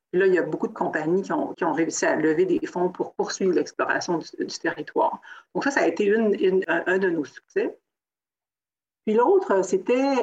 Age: 50-69